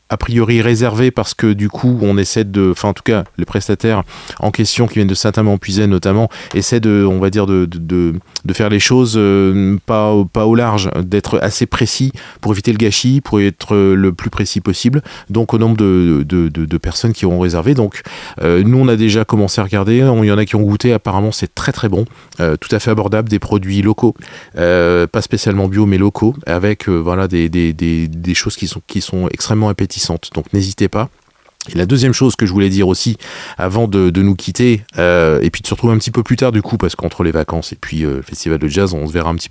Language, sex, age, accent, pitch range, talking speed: French, male, 30-49, French, 95-115 Hz, 240 wpm